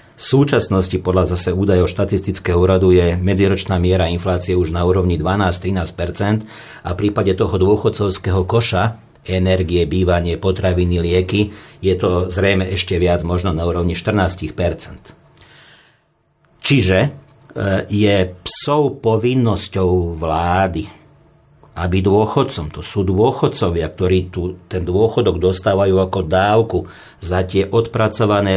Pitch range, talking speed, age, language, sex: 90-110 Hz, 115 wpm, 50-69, Slovak, male